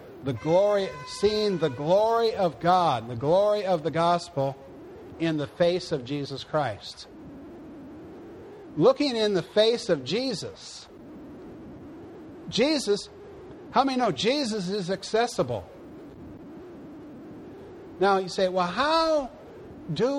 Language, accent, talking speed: English, American, 110 wpm